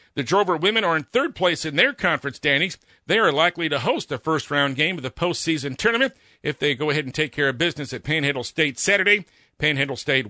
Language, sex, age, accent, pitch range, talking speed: English, male, 50-69, American, 140-180 Hz, 220 wpm